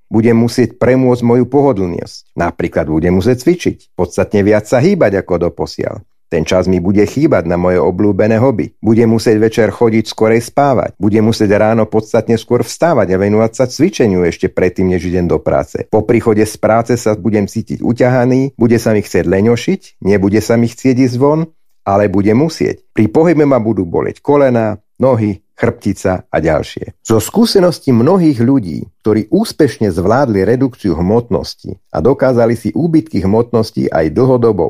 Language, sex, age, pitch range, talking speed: Slovak, male, 50-69, 100-130 Hz, 165 wpm